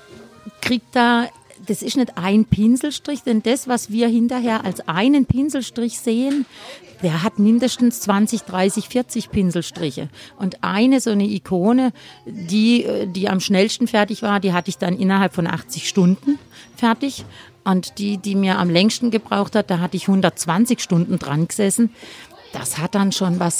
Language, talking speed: German, 160 wpm